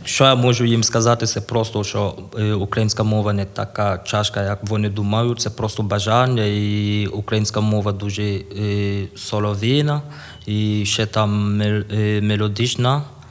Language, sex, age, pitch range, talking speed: Ukrainian, male, 20-39, 100-115 Hz, 125 wpm